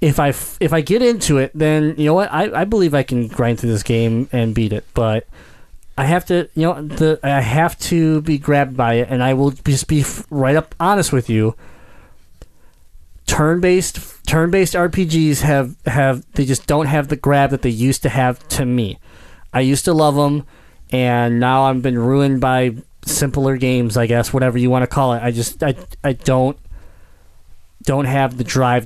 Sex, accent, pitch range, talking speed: male, American, 120-155 Hz, 200 wpm